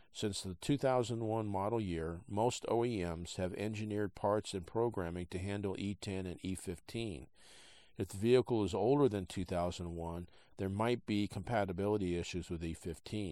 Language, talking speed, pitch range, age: English, 140 wpm, 90-105 Hz, 50-69